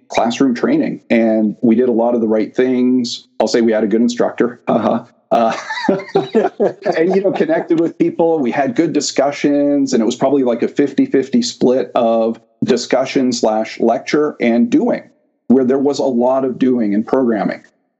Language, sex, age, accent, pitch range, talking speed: English, male, 50-69, American, 110-130 Hz, 175 wpm